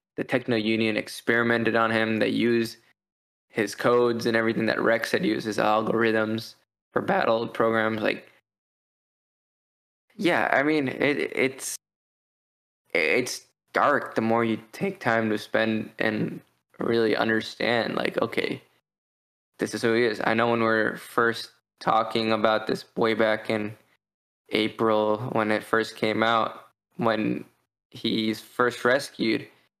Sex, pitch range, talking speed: male, 110-115 Hz, 135 wpm